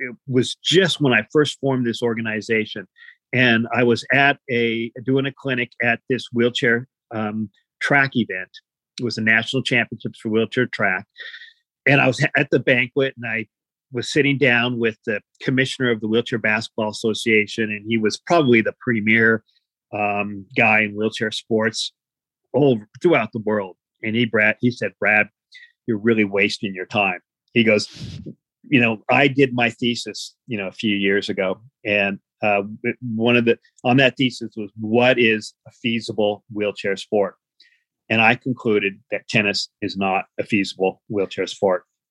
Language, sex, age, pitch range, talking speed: English, male, 40-59, 110-135 Hz, 165 wpm